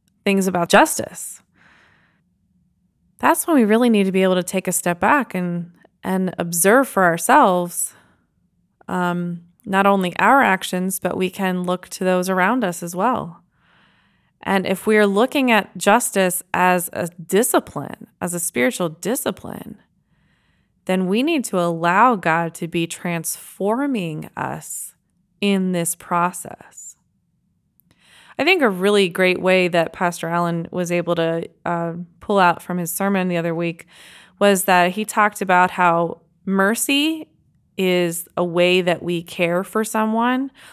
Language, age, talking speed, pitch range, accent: English, 20-39, 145 wpm, 175-200 Hz, American